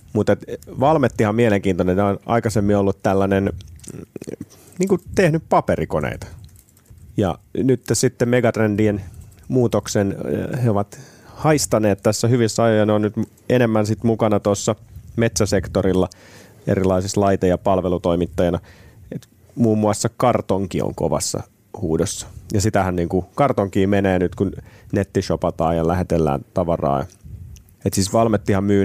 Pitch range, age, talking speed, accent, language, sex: 90-110 Hz, 30-49, 110 wpm, native, Finnish, male